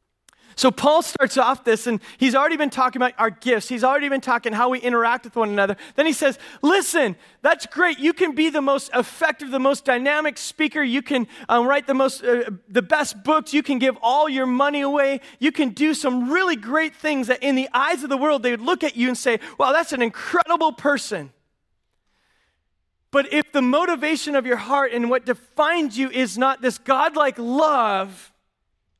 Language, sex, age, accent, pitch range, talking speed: English, male, 30-49, American, 220-290 Hz, 205 wpm